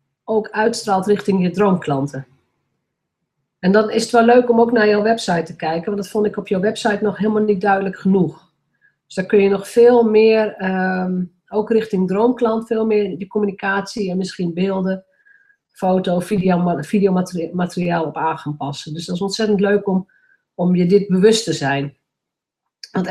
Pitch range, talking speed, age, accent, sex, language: 170-220 Hz, 170 wpm, 40-59, Dutch, female, Dutch